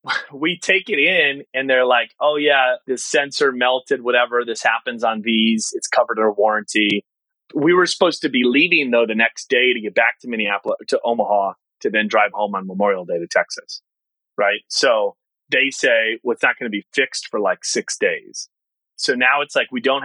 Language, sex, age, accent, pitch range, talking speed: English, male, 30-49, American, 110-140 Hz, 205 wpm